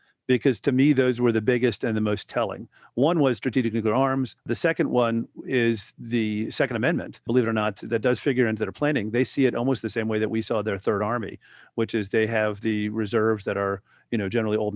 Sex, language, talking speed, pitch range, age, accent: male, English, 235 wpm, 110-130 Hz, 40-59, American